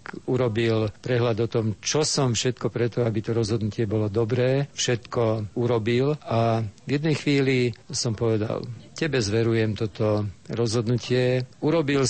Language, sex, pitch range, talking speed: Slovak, male, 115-130 Hz, 130 wpm